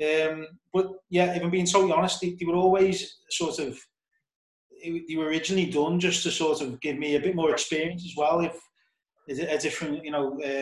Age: 30-49